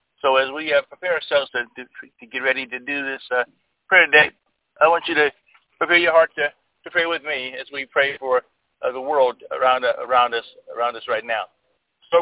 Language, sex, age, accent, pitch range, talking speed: English, male, 50-69, American, 130-150 Hz, 220 wpm